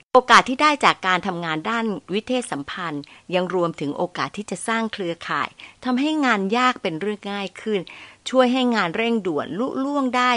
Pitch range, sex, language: 175-235 Hz, female, Thai